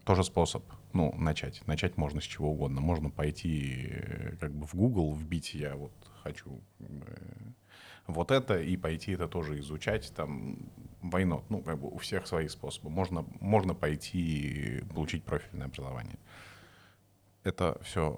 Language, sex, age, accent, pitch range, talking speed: Russian, male, 30-49, native, 75-100 Hz, 150 wpm